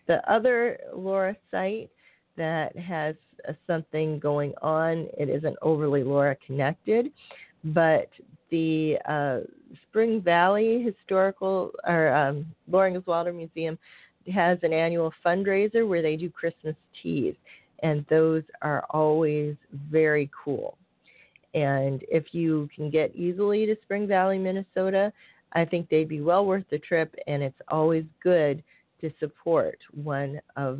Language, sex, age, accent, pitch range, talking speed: English, female, 40-59, American, 150-185 Hz, 130 wpm